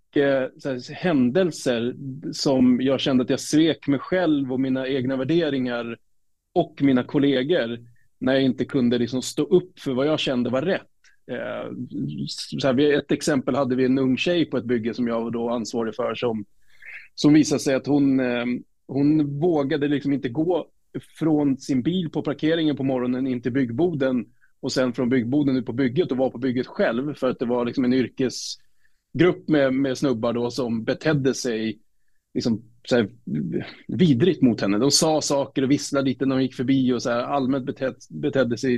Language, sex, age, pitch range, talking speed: English, male, 30-49, 125-145 Hz, 180 wpm